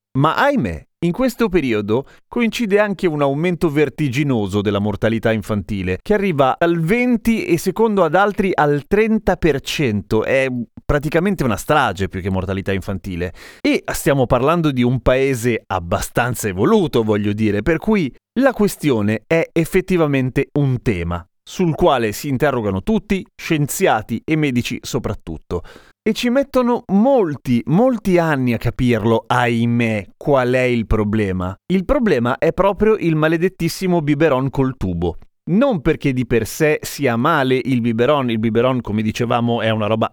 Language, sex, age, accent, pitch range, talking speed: Italian, male, 30-49, native, 115-170 Hz, 145 wpm